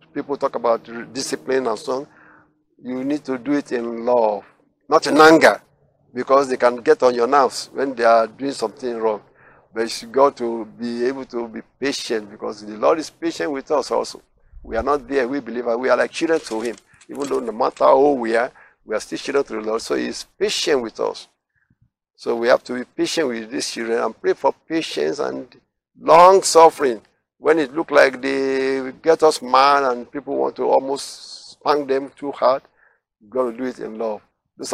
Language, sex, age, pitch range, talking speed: English, male, 60-79, 115-145 Hz, 210 wpm